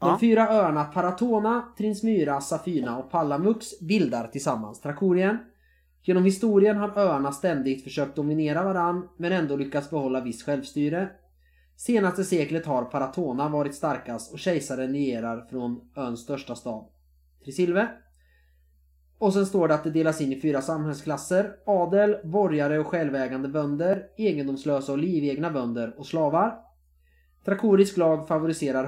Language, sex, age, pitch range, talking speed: Swedish, male, 20-39, 120-175 Hz, 135 wpm